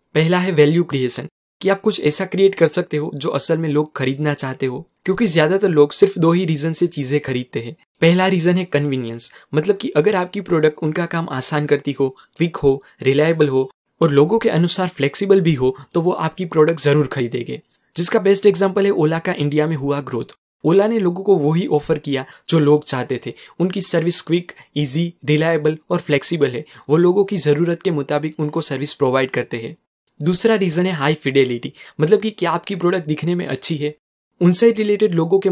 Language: Hindi